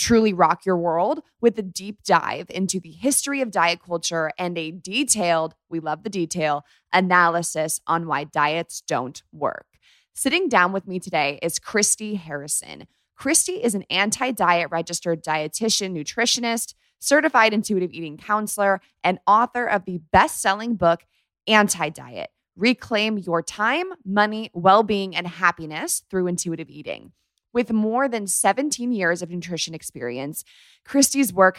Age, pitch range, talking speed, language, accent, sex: 20-39, 170-230 Hz, 140 wpm, English, American, female